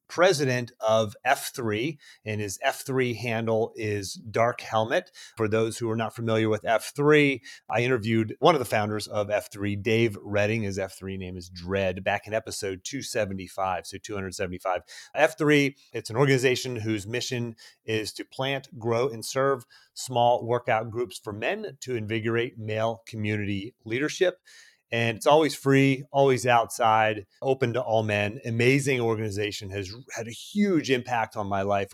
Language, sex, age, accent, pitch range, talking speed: English, male, 30-49, American, 95-120 Hz, 150 wpm